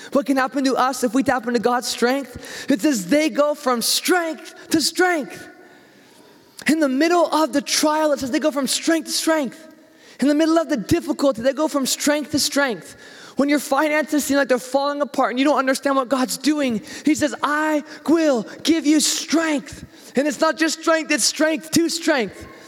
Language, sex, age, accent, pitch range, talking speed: English, male, 20-39, American, 265-305 Hz, 200 wpm